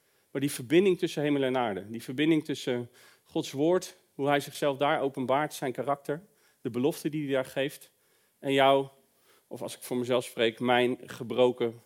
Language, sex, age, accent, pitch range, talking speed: Dutch, male, 40-59, Dutch, 115-140 Hz, 175 wpm